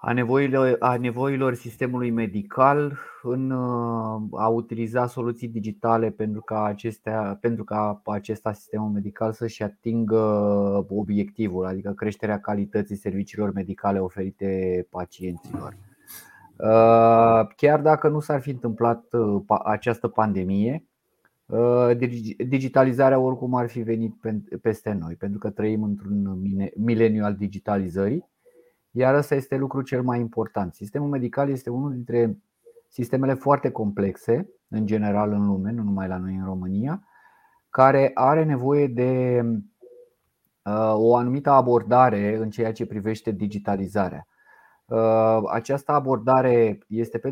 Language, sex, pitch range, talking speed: Romanian, male, 105-125 Hz, 110 wpm